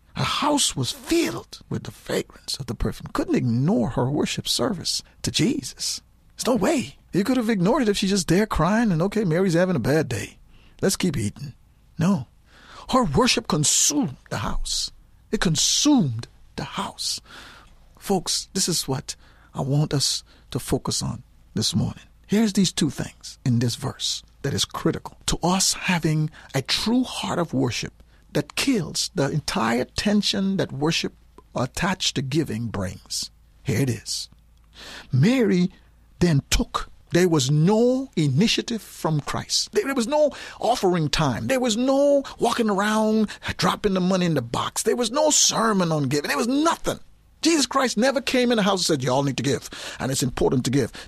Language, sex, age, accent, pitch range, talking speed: English, male, 50-69, American, 145-235 Hz, 170 wpm